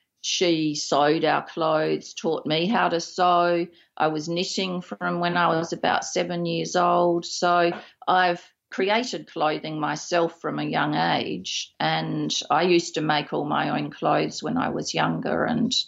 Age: 40-59